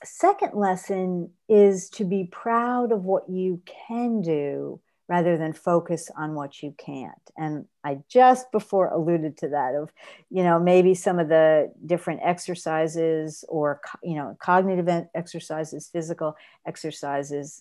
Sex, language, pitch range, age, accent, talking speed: female, English, 165-200 Hz, 50-69, American, 140 wpm